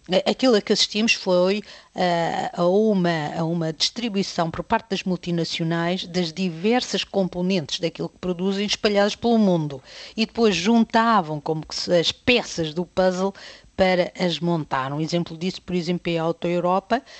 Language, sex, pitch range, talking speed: Portuguese, female, 165-195 Hz, 155 wpm